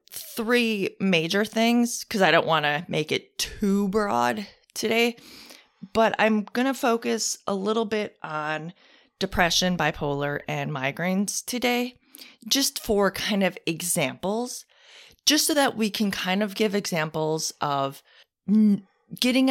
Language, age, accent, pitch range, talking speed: English, 30-49, American, 155-230 Hz, 130 wpm